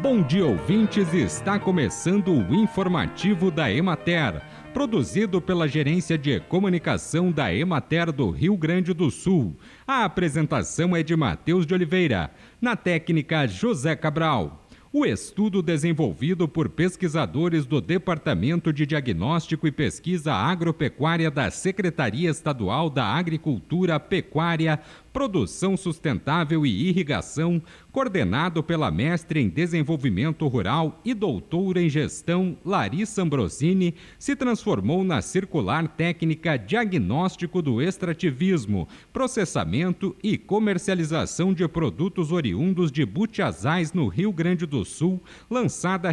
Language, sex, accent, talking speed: Portuguese, male, Brazilian, 115 wpm